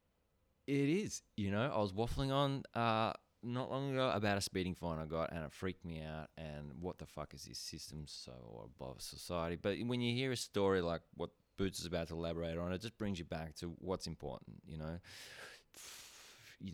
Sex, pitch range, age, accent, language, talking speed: male, 80-100 Hz, 20-39, Australian, English, 210 wpm